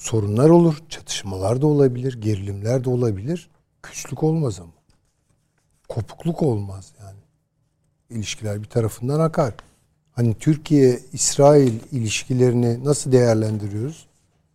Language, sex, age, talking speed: Turkish, male, 50-69, 95 wpm